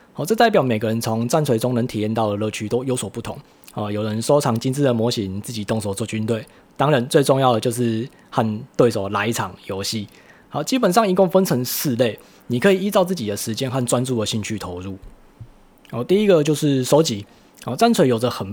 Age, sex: 20-39, male